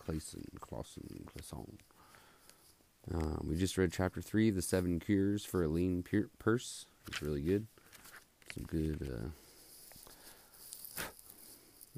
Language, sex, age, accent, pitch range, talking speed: English, male, 30-49, American, 80-100 Hz, 110 wpm